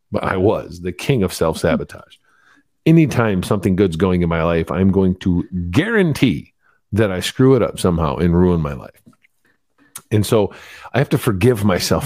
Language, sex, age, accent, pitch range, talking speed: English, male, 50-69, American, 90-120 Hz, 175 wpm